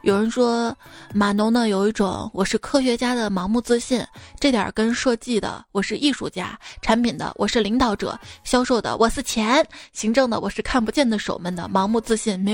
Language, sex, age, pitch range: Chinese, female, 20-39, 215-290 Hz